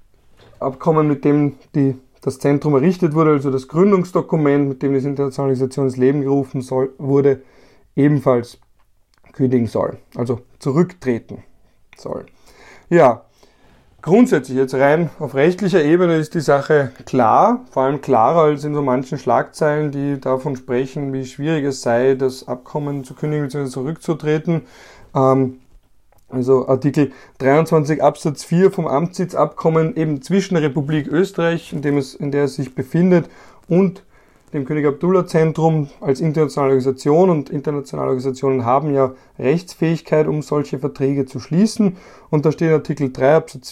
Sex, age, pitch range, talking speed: male, 30-49, 130-160 Hz, 140 wpm